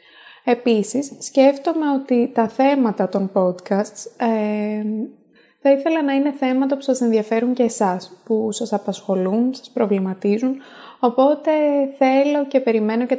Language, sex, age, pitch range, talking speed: Greek, female, 20-39, 205-260 Hz, 125 wpm